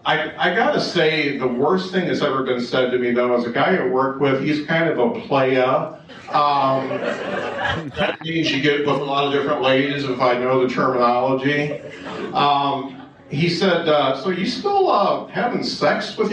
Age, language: 50-69, English